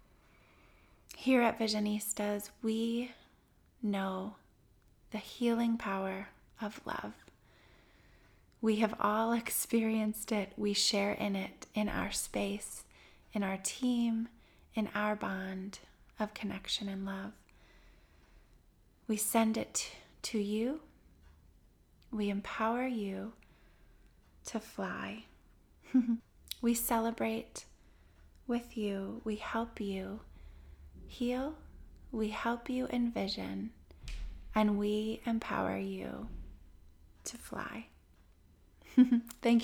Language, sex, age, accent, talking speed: English, female, 30-49, American, 90 wpm